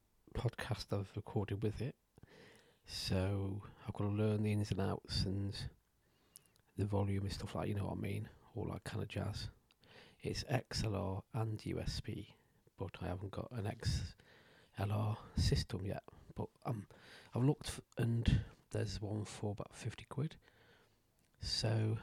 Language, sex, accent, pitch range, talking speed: English, male, British, 100-115 Hz, 150 wpm